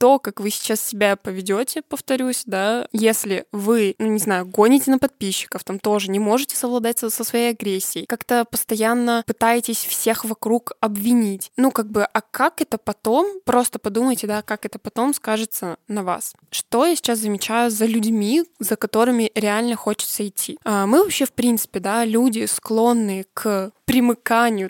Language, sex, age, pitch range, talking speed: Russian, female, 20-39, 205-235 Hz, 165 wpm